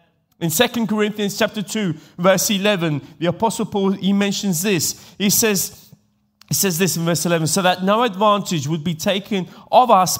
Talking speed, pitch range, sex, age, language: 175 wpm, 165-210 Hz, male, 30-49, Italian